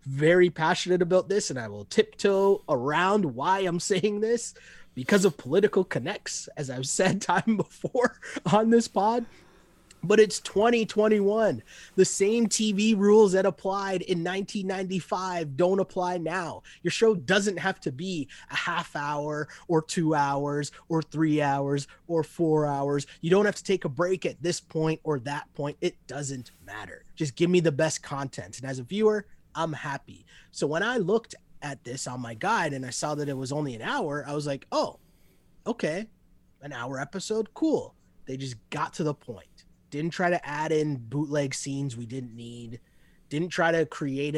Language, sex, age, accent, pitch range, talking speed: English, male, 20-39, American, 140-190 Hz, 180 wpm